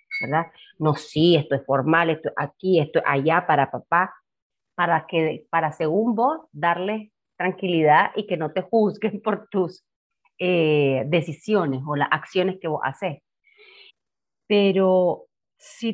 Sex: female